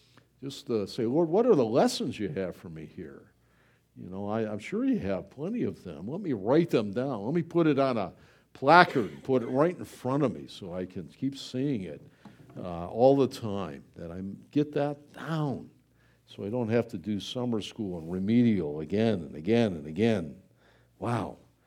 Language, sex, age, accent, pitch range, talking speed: English, male, 60-79, American, 110-170 Hz, 200 wpm